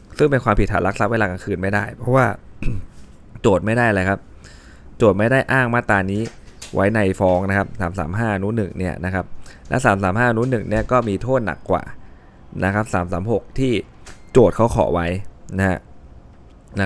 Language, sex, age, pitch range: Thai, male, 20-39, 80-105 Hz